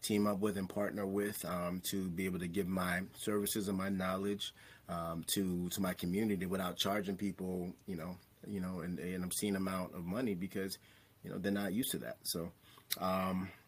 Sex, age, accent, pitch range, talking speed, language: male, 30-49, American, 90-110 Hz, 200 wpm, English